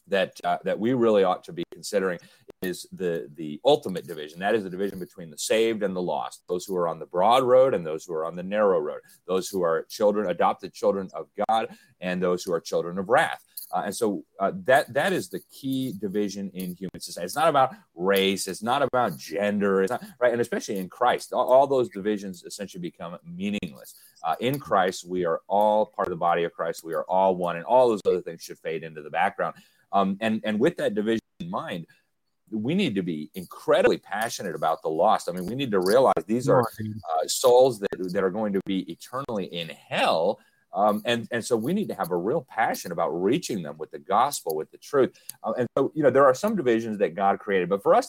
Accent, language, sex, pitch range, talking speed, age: American, English, male, 90-125 Hz, 230 wpm, 30-49